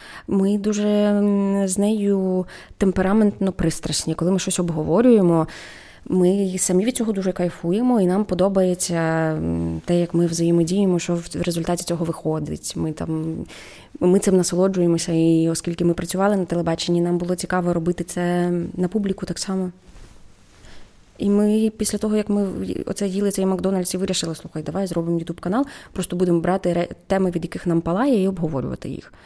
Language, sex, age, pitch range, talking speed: Ukrainian, female, 20-39, 165-195 Hz, 155 wpm